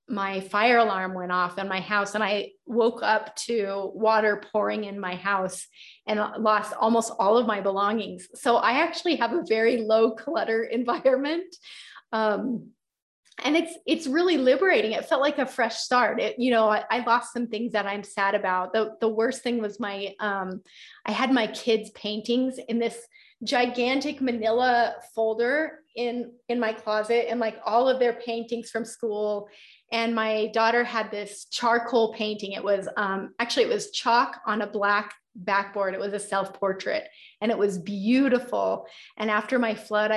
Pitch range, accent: 200-240 Hz, American